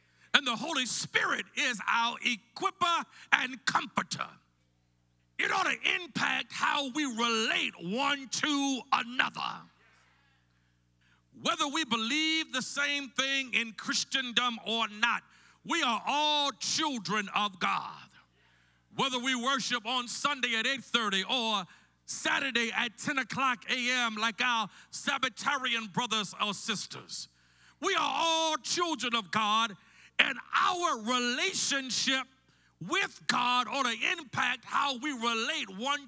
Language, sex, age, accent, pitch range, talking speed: English, male, 50-69, American, 200-270 Hz, 120 wpm